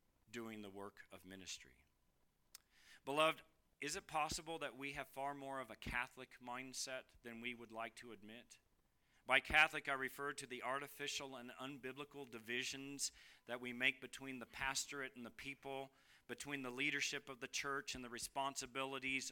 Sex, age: male, 40-59